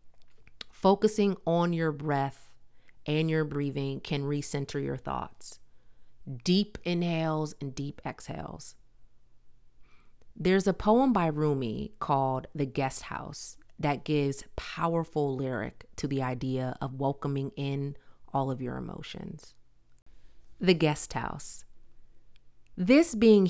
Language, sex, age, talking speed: English, female, 30-49, 110 wpm